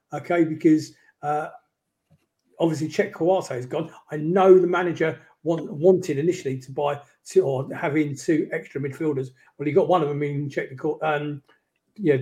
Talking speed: 160 wpm